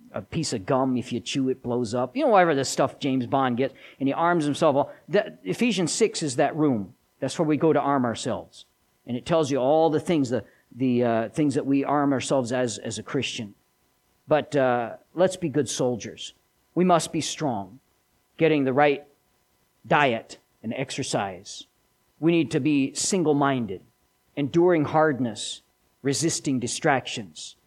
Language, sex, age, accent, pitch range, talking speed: English, male, 50-69, American, 120-150 Hz, 170 wpm